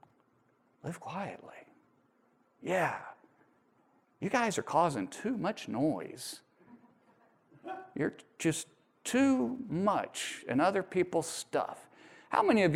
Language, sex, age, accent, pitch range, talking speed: English, male, 40-59, American, 165-270 Hz, 100 wpm